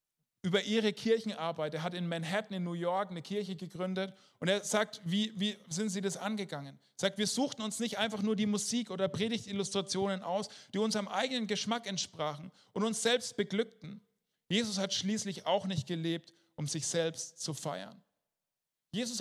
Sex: male